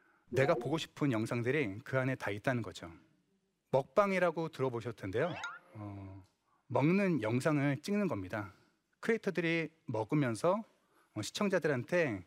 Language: Korean